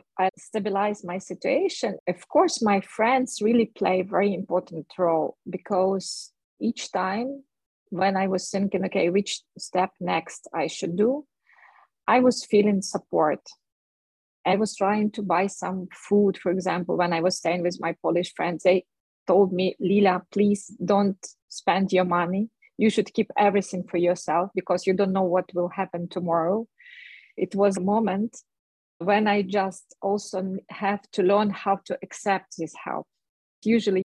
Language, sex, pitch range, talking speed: English, female, 180-205 Hz, 155 wpm